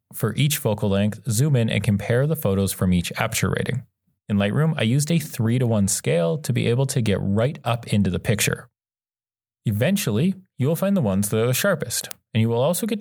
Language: English